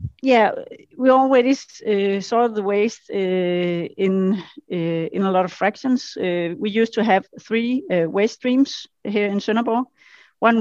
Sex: female